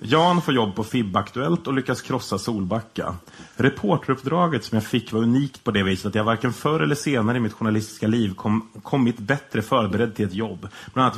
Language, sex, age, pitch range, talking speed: Swedish, male, 30-49, 105-130 Hz, 205 wpm